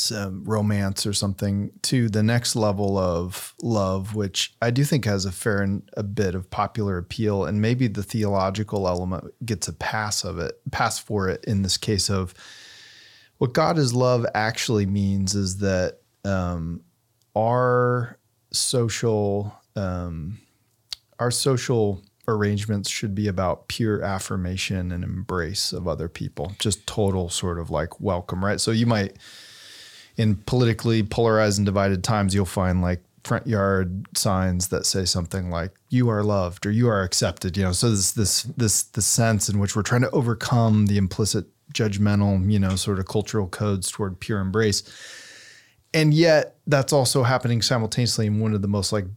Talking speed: 165 wpm